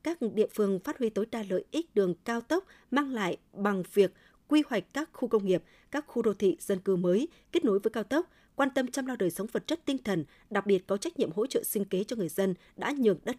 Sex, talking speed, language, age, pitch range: female, 265 wpm, Vietnamese, 20-39, 190-245 Hz